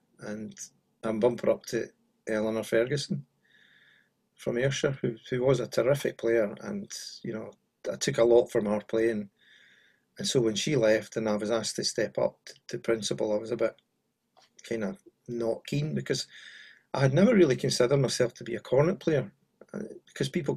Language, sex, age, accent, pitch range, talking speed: English, male, 40-59, British, 110-120 Hz, 180 wpm